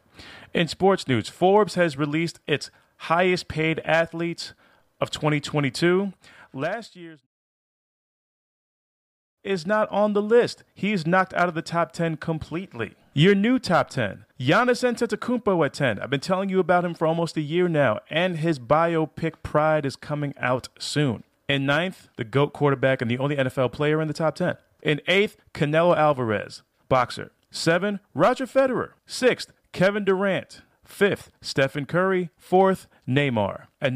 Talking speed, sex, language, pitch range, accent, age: 150 wpm, male, English, 140-180 Hz, American, 30-49